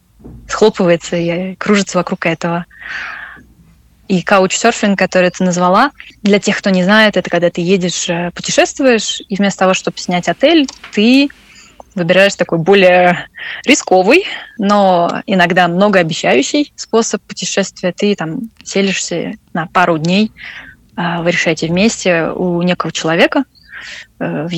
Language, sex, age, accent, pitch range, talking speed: Russian, female, 20-39, native, 175-210 Hz, 120 wpm